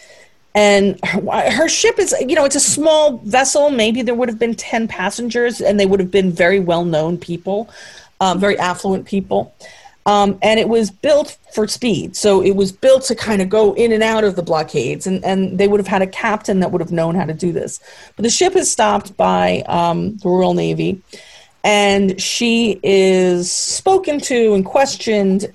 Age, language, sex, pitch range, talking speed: 40-59, English, female, 175-220 Hz, 195 wpm